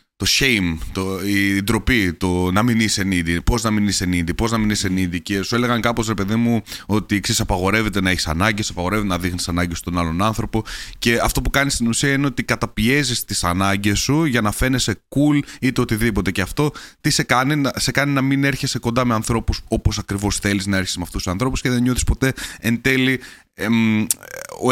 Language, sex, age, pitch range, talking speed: Greek, male, 30-49, 95-130 Hz, 210 wpm